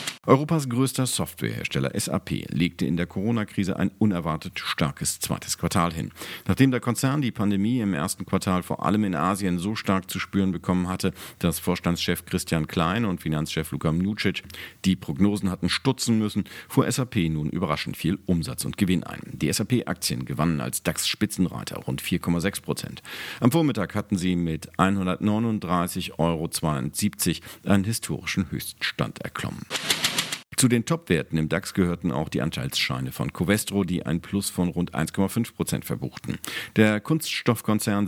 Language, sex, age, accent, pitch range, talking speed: German, male, 50-69, German, 85-105 Hz, 150 wpm